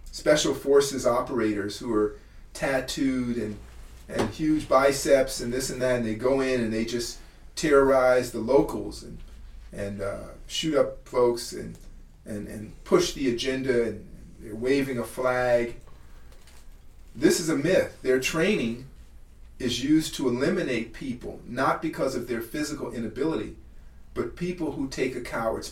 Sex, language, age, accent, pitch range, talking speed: male, English, 40-59, American, 105-140 Hz, 150 wpm